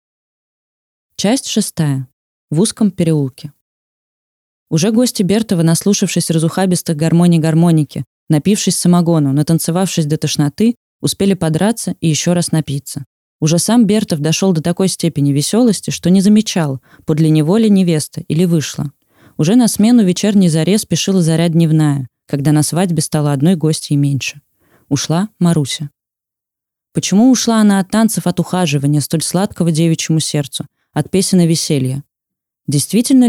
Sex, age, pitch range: female, 20-39, 150-190 Hz